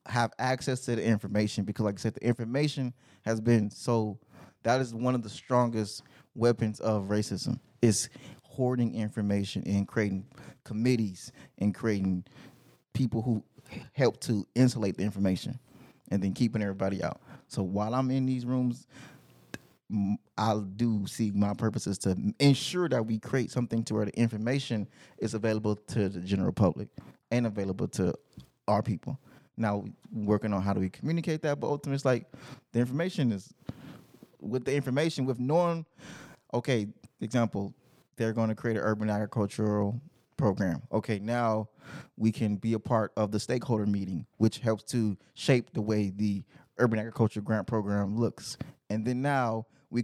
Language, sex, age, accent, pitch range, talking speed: English, male, 20-39, American, 105-125 Hz, 160 wpm